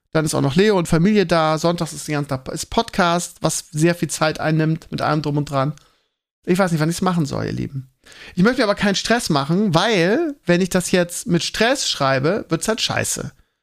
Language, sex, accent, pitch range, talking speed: German, male, German, 160-195 Hz, 225 wpm